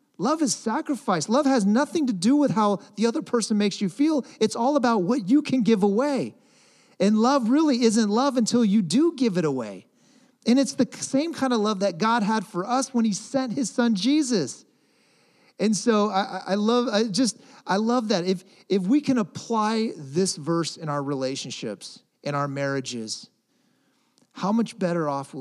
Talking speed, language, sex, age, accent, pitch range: 190 wpm, English, male, 40-59, American, 150-240 Hz